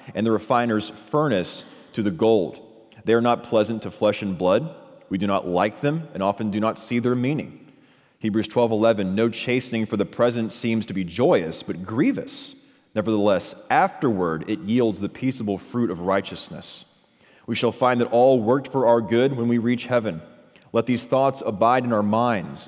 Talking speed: 185 wpm